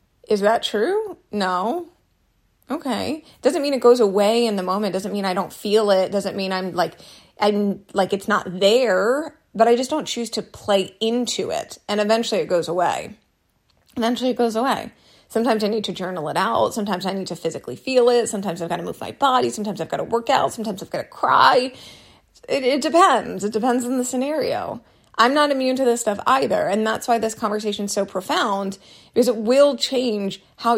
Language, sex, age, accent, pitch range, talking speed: English, female, 30-49, American, 195-240 Hz, 205 wpm